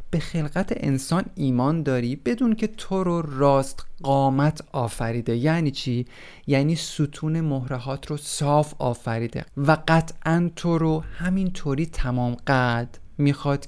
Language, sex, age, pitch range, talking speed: Persian, male, 30-49, 120-150 Hz, 125 wpm